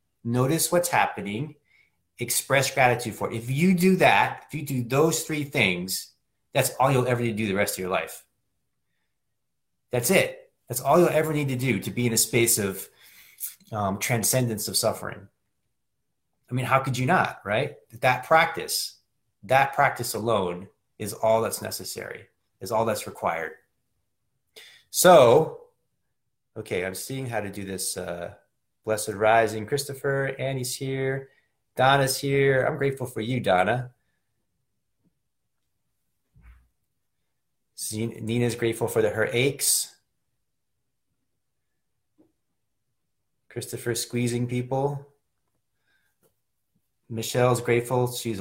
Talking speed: 125 wpm